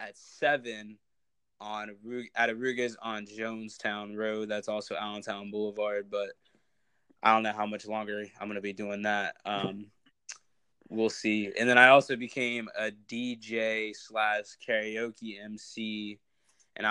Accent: American